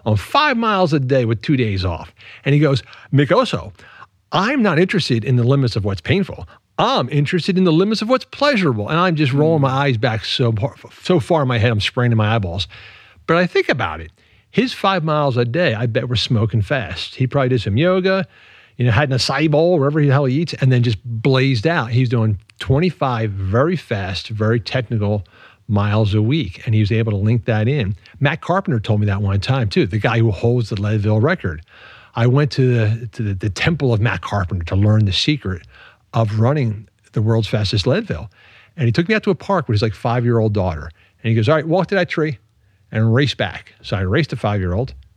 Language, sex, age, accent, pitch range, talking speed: English, male, 50-69, American, 105-145 Hz, 225 wpm